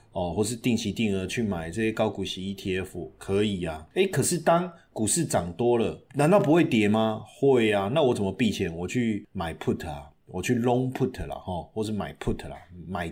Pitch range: 95-145 Hz